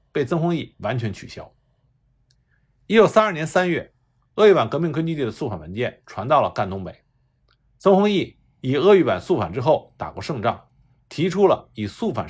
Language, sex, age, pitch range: Chinese, male, 50-69, 125-190 Hz